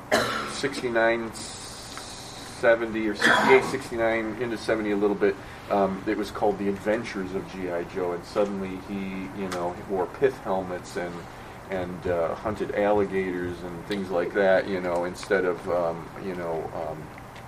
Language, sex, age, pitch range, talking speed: English, male, 30-49, 95-110 Hz, 150 wpm